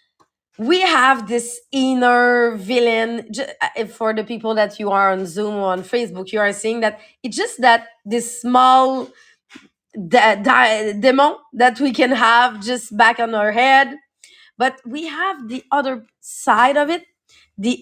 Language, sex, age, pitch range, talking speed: English, female, 30-49, 220-275 Hz, 160 wpm